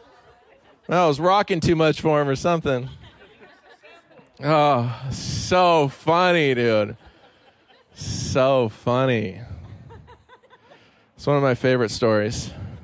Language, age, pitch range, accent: English, 20-39, 130-200 Hz, American